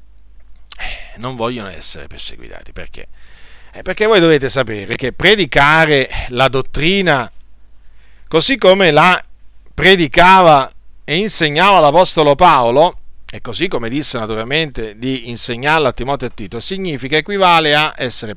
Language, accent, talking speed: Italian, native, 120 wpm